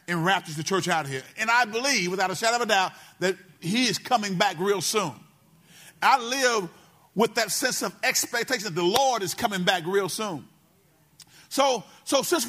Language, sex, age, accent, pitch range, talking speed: English, male, 40-59, American, 160-225 Hz, 195 wpm